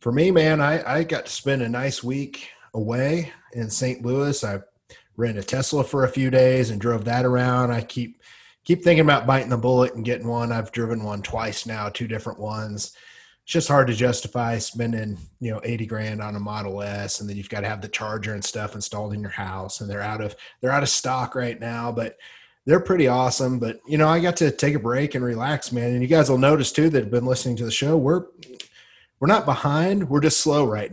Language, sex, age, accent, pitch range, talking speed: English, male, 30-49, American, 115-135 Hz, 235 wpm